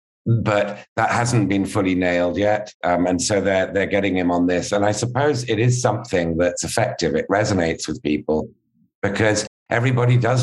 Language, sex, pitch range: English, male, 90-100 Hz